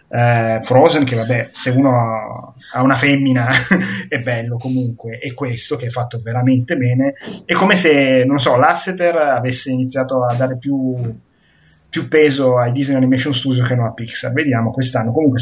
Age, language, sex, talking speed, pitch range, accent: 20-39, Italian, male, 165 wpm, 120-140 Hz, native